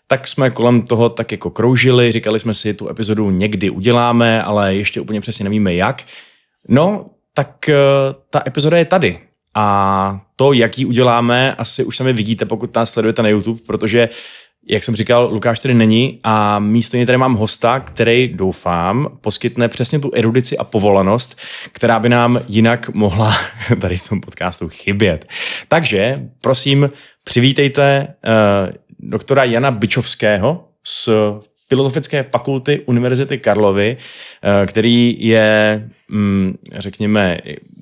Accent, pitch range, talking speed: native, 95-120 Hz, 140 wpm